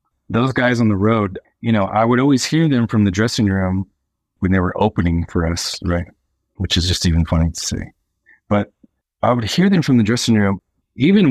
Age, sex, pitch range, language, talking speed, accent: 30-49, male, 90-115 Hz, English, 210 wpm, American